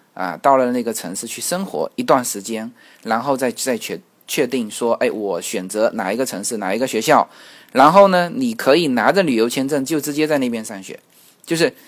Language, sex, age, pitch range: Chinese, male, 20-39, 115-160 Hz